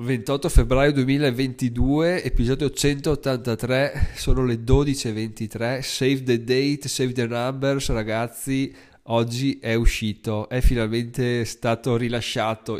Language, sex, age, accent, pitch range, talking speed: Italian, male, 20-39, native, 115-140 Hz, 105 wpm